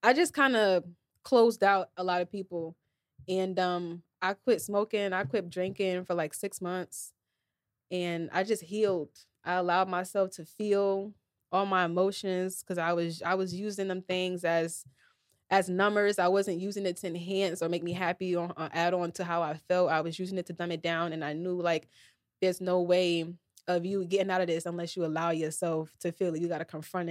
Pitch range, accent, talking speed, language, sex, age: 170-195 Hz, American, 210 wpm, English, female, 20-39